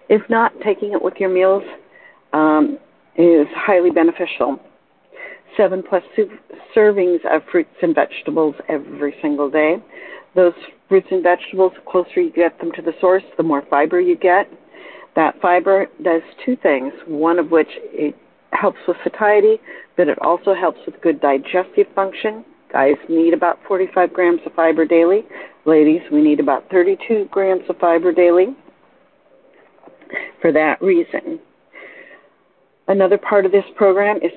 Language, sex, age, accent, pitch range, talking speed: English, female, 50-69, American, 165-215 Hz, 145 wpm